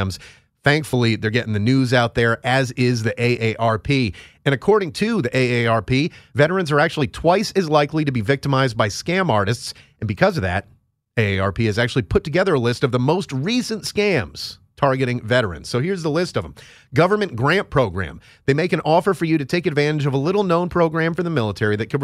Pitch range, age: 105-145 Hz, 30-49